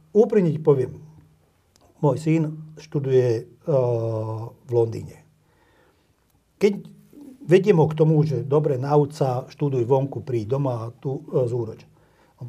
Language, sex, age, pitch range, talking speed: Slovak, male, 50-69, 130-160 Hz, 125 wpm